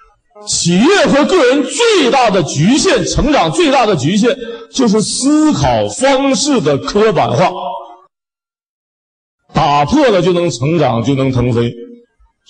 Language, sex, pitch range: Chinese, male, 115-170 Hz